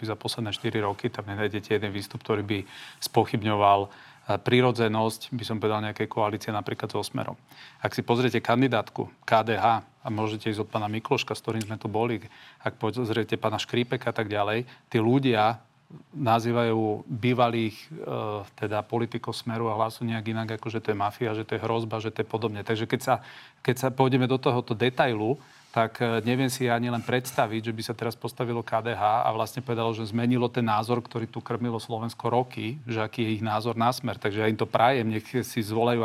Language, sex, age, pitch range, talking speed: Slovak, male, 40-59, 110-125 Hz, 195 wpm